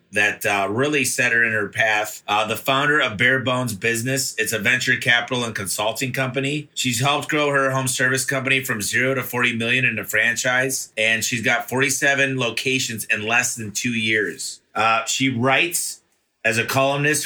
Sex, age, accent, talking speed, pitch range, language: male, 30-49, American, 185 wpm, 115-140 Hz, English